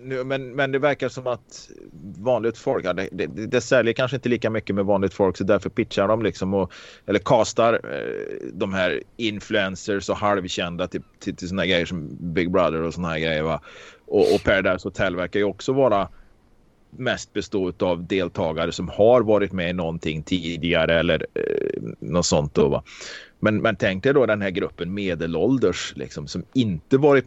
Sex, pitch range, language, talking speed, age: male, 90-125 Hz, Swedish, 190 wpm, 30-49